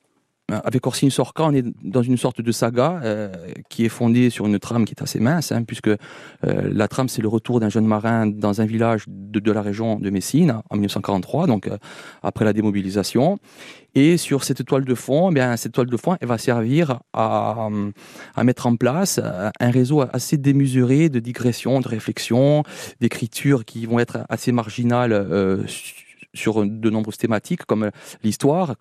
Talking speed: 185 wpm